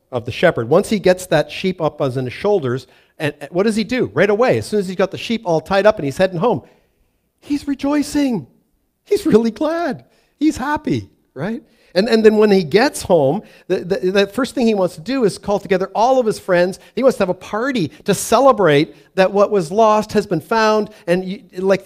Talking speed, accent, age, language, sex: 230 wpm, American, 50-69, English, male